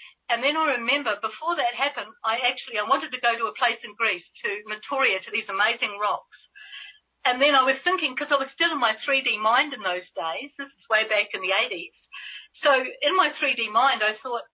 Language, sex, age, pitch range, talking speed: English, female, 50-69, 245-335 Hz, 225 wpm